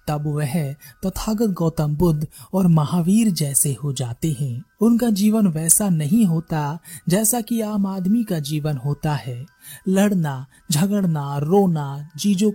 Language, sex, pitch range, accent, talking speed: Hindi, male, 150-210 Hz, native, 140 wpm